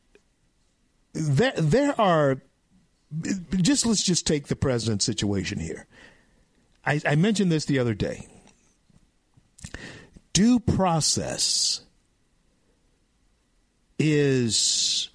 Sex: male